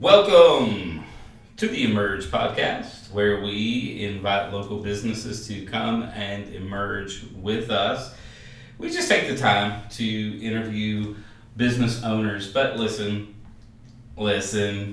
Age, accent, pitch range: 30-49, American, 105-120 Hz